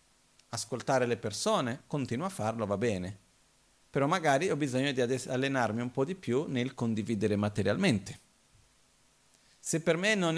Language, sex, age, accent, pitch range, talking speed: Italian, male, 50-69, native, 120-190 Hz, 145 wpm